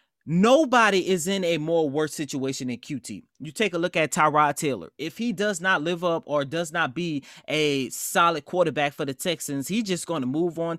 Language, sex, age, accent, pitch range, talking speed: English, male, 30-49, American, 155-205 Hz, 210 wpm